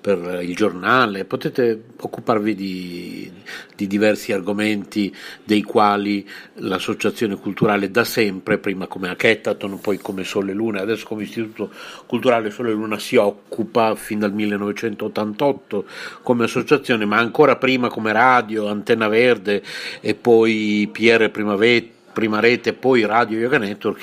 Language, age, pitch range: Italian, 50-69, 100-120 Hz